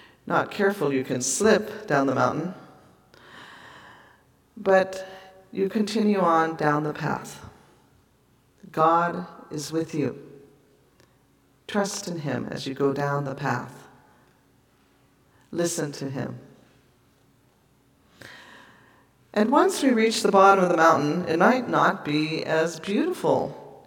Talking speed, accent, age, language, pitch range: 115 wpm, American, 50-69, English, 145-200 Hz